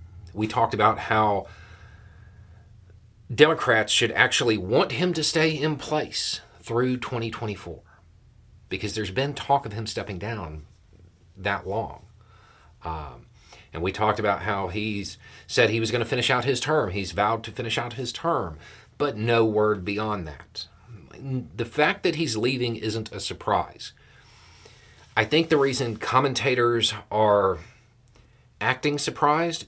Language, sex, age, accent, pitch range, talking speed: English, male, 40-59, American, 95-120 Hz, 140 wpm